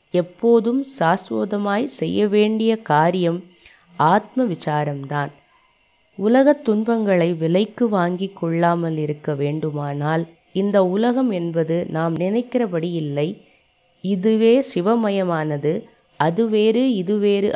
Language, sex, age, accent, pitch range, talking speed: Tamil, female, 20-39, native, 155-215 Hz, 80 wpm